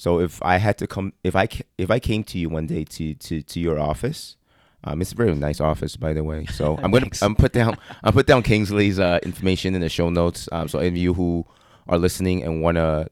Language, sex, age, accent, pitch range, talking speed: English, male, 30-49, American, 75-95 Hz, 250 wpm